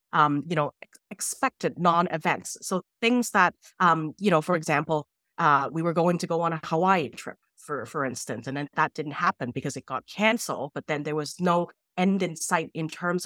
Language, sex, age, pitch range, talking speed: English, female, 30-49, 155-205 Hz, 215 wpm